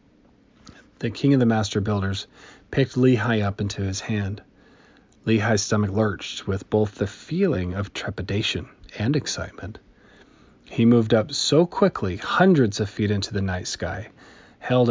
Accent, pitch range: American, 100-120 Hz